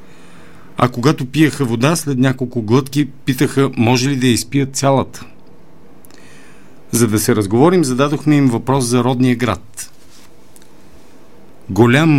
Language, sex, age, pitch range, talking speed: Bulgarian, male, 50-69, 110-135 Hz, 120 wpm